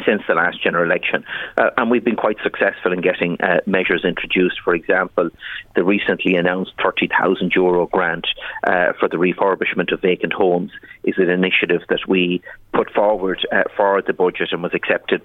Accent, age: Irish, 30-49